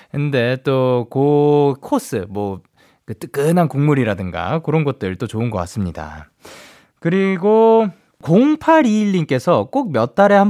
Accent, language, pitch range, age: native, Korean, 120-195 Hz, 20-39